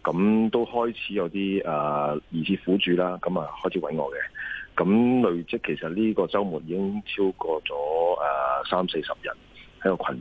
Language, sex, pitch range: Chinese, male, 80-100 Hz